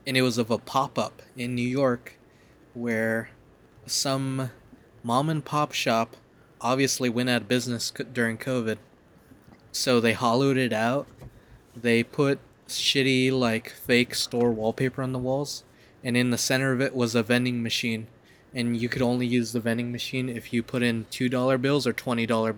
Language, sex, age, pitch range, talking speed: English, male, 20-39, 115-130 Hz, 160 wpm